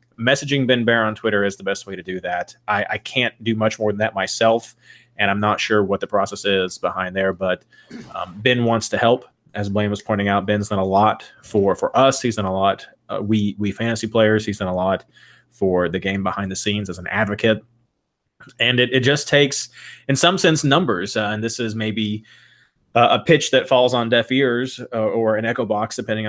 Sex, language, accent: male, English, American